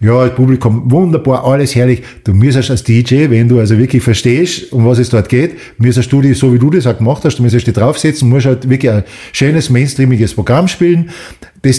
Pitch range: 120-155 Hz